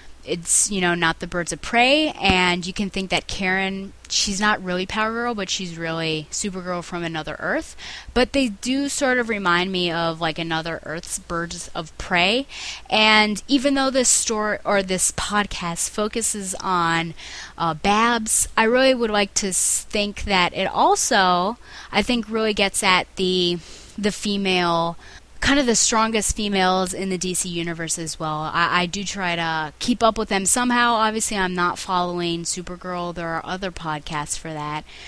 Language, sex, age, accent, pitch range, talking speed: English, female, 20-39, American, 170-225 Hz, 175 wpm